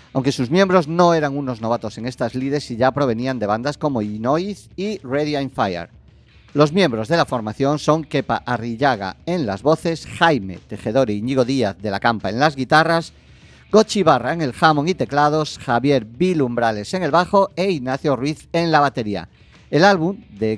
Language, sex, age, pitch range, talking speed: Spanish, male, 40-59, 115-160 Hz, 185 wpm